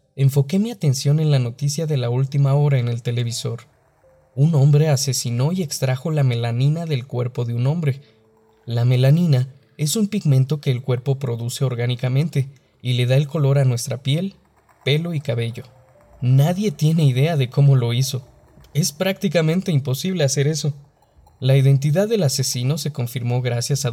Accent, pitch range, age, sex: Mexican, 125-150 Hz, 20-39, male